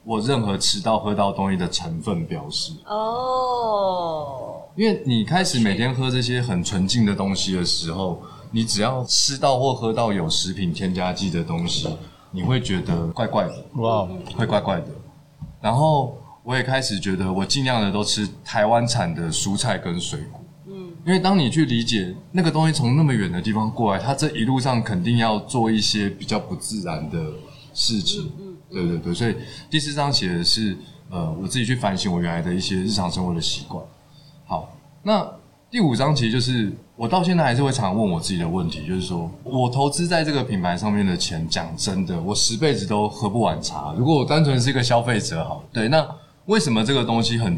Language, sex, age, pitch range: Chinese, male, 20-39, 100-145 Hz